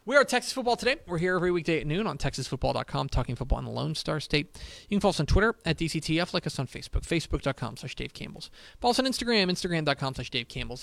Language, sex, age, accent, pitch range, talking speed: English, male, 30-49, American, 130-180 Hz, 235 wpm